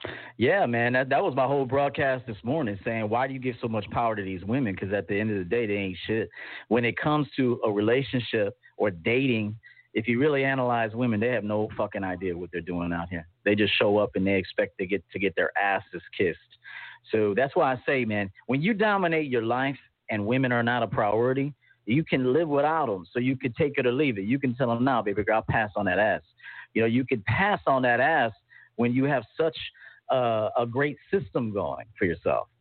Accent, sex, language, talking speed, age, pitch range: American, male, English, 235 wpm, 40-59, 110-130 Hz